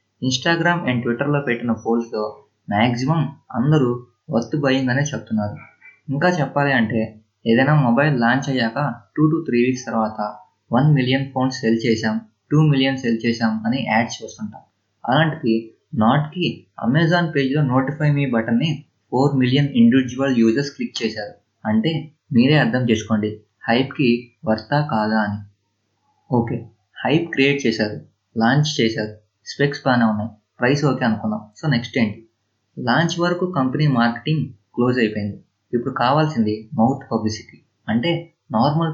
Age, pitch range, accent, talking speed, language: 20-39, 110-140 Hz, native, 105 wpm, Telugu